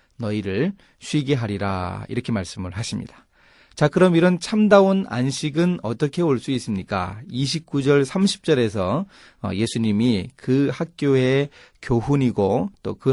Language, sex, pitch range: Korean, male, 105-150 Hz